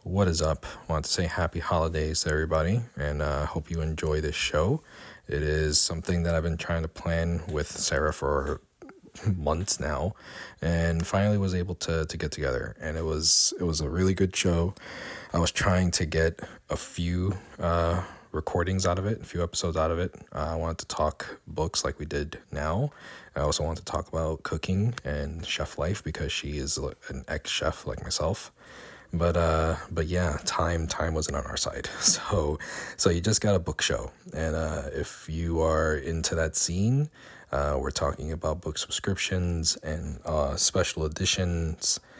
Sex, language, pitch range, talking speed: male, English, 75-90 Hz, 180 wpm